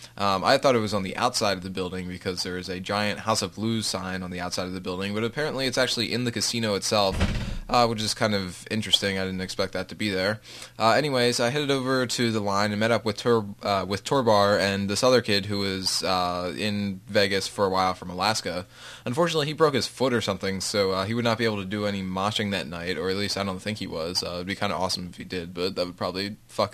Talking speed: 270 wpm